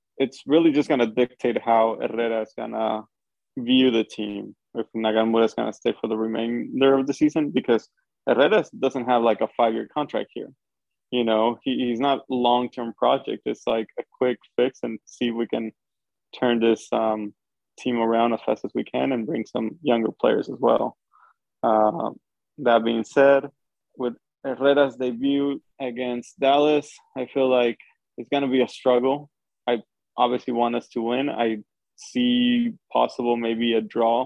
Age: 20-39